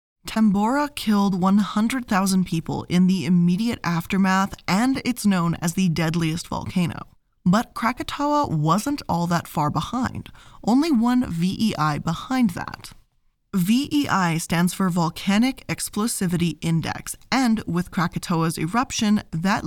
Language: English